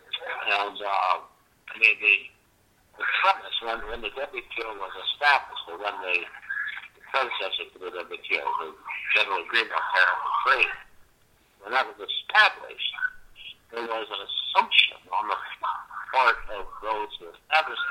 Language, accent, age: English, American, 60-79